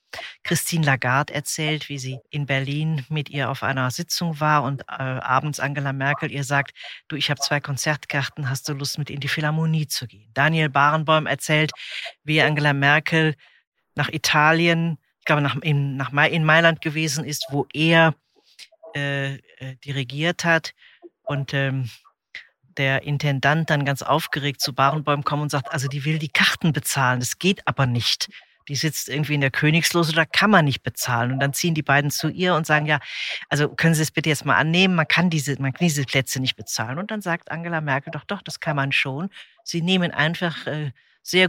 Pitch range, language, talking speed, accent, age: 140-170 Hz, German, 185 wpm, German, 40-59